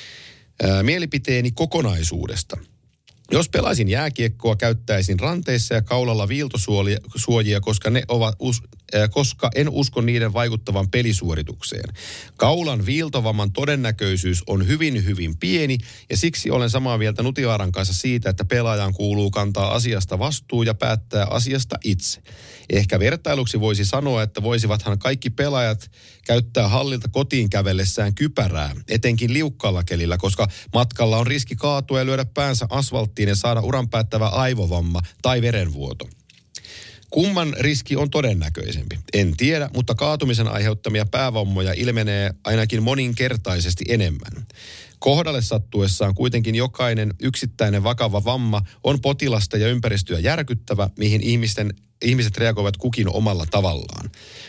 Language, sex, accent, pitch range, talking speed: Finnish, male, native, 100-125 Hz, 120 wpm